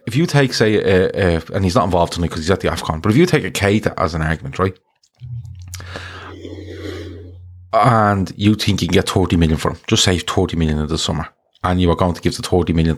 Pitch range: 90-115 Hz